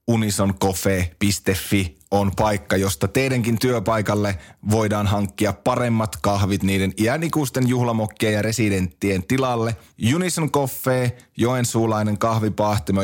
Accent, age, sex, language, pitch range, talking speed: native, 30-49, male, Finnish, 100-120 Hz, 95 wpm